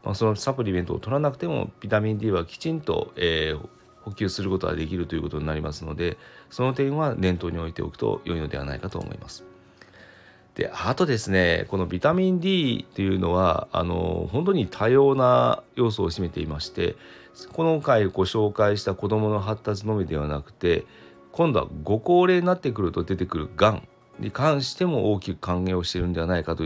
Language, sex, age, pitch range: Japanese, male, 40-59, 85-130 Hz